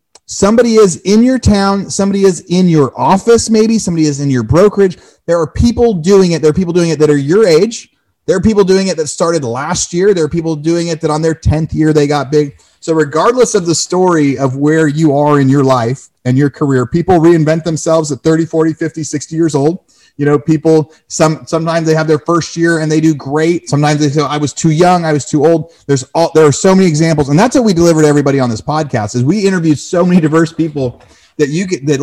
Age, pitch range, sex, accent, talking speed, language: 30-49, 140-170 Hz, male, American, 240 wpm, English